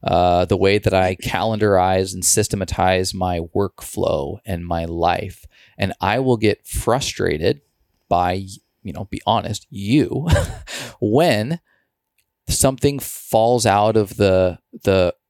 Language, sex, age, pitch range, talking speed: English, male, 20-39, 95-115 Hz, 120 wpm